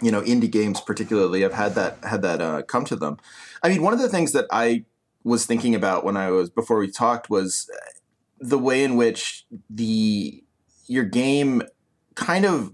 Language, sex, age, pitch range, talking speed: English, male, 30-49, 95-120 Hz, 195 wpm